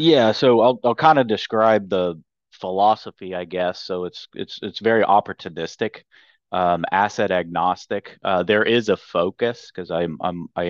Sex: male